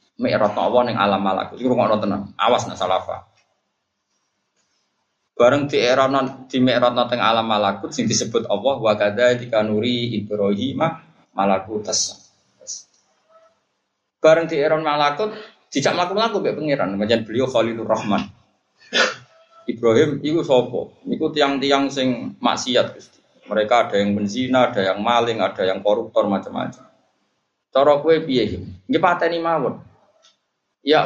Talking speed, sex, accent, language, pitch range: 65 wpm, male, native, Indonesian, 110-150 Hz